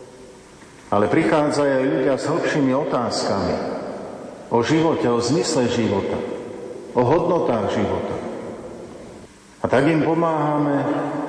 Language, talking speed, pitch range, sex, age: Slovak, 100 wpm, 130-155 Hz, male, 50-69